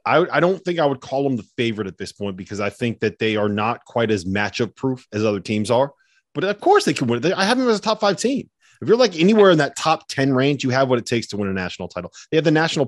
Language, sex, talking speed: English, male, 305 wpm